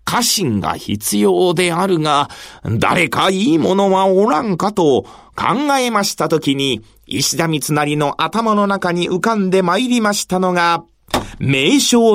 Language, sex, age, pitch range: Japanese, male, 40-59, 150-230 Hz